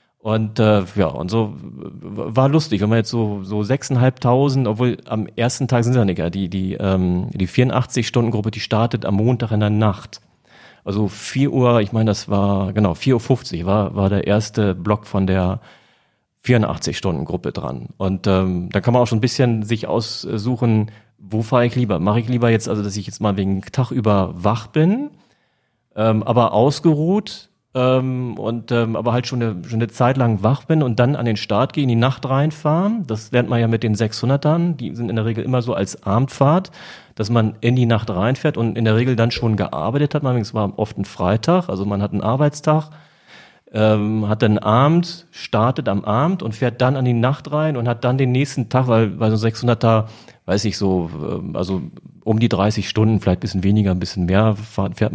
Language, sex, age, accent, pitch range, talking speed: German, male, 30-49, German, 105-125 Hz, 205 wpm